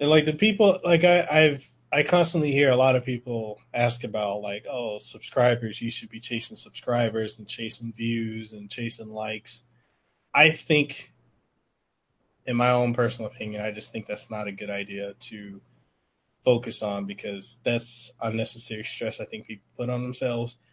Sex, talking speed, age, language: male, 165 wpm, 20-39, English